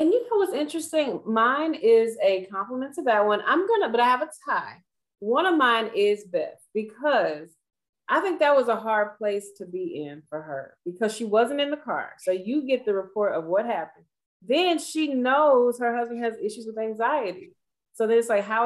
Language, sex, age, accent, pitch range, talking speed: English, female, 30-49, American, 190-255 Hz, 210 wpm